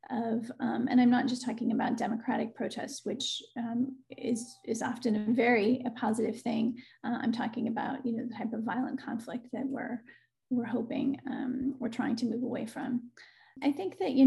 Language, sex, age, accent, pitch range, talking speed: English, female, 30-49, American, 235-255 Hz, 195 wpm